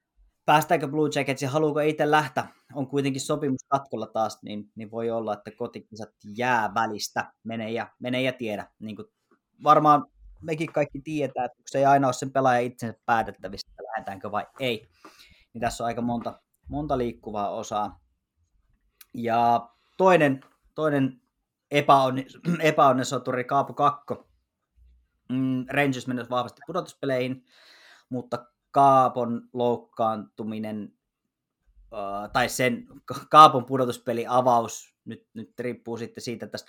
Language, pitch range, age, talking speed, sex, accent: Finnish, 110-140 Hz, 20-39, 120 wpm, male, native